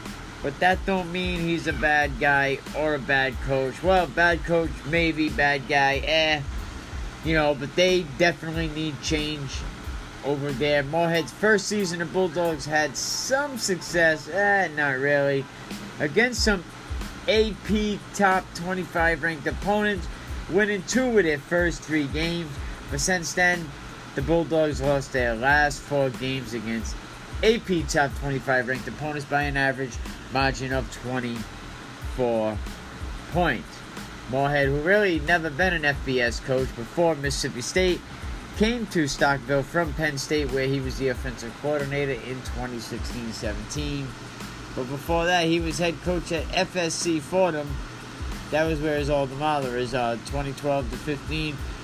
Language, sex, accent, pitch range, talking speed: English, male, American, 135-170 Hz, 140 wpm